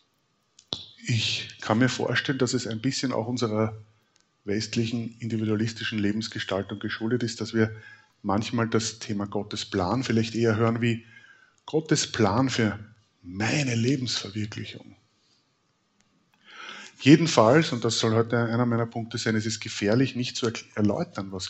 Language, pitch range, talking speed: German, 105-125 Hz, 130 wpm